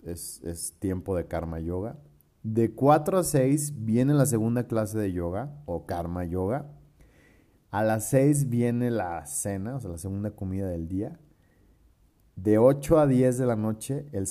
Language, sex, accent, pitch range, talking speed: Spanish, male, Mexican, 85-110 Hz, 170 wpm